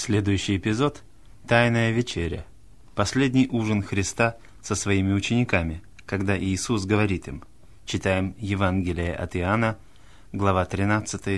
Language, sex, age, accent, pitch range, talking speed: Russian, male, 30-49, native, 100-115 Hz, 105 wpm